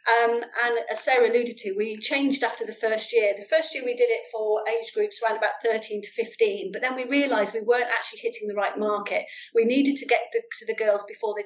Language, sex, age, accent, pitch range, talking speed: English, female, 40-59, British, 205-255 Hz, 245 wpm